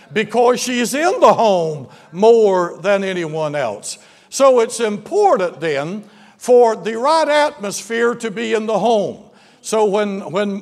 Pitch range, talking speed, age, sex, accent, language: 210-270 Hz, 140 wpm, 60-79, male, American, English